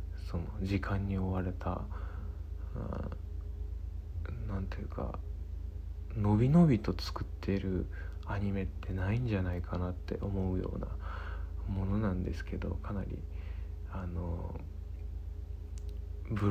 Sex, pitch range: male, 80-100 Hz